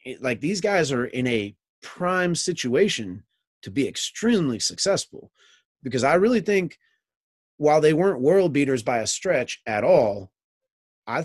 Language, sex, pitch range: English, male, 120-165 Hz